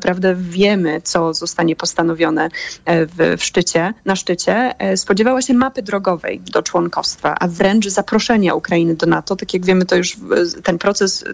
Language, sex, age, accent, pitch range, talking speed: Polish, female, 20-39, native, 175-210 Hz, 155 wpm